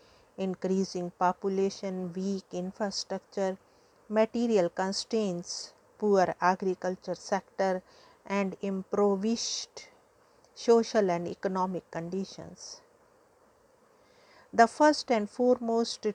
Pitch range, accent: 180-220 Hz, Indian